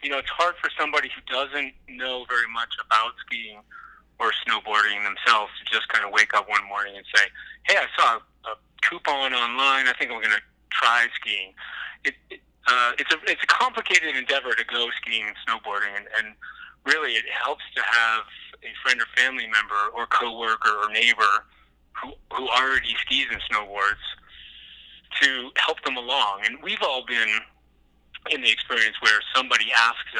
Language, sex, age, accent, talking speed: English, male, 30-49, American, 175 wpm